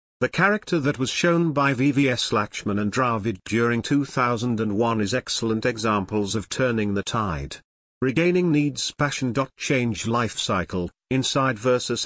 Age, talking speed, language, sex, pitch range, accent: 50-69, 135 wpm, English, male, 110-140 Hz, British